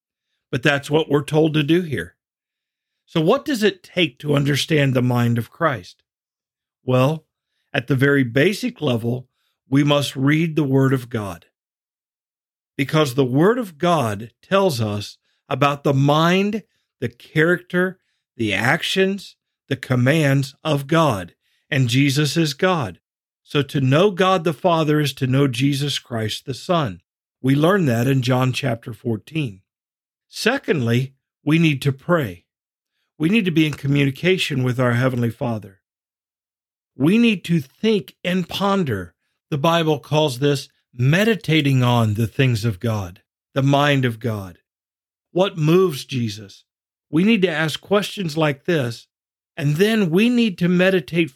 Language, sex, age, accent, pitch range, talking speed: English, male, 50-69, American, 125-170 Hz, 145 wpm